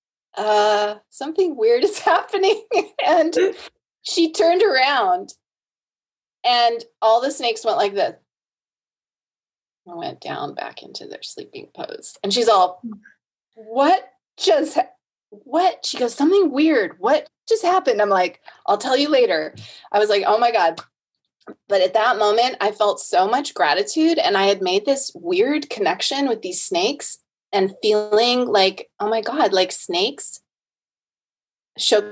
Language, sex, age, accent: English, female, 20-39, American